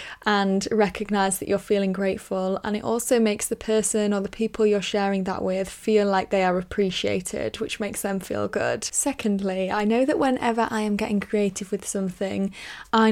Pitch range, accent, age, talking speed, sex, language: 195-225 Hz, British, 10-29, 190 wpm, female, English